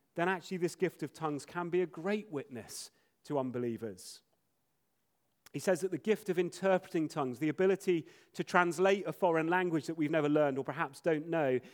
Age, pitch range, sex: 30-49, 145-190 Hz, male